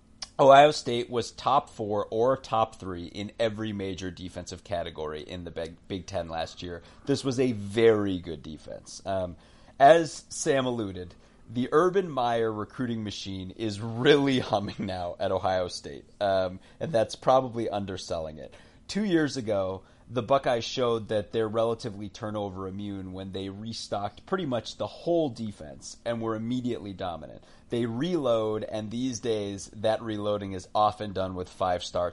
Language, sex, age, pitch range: English, male, 30-49, 95-125 Hz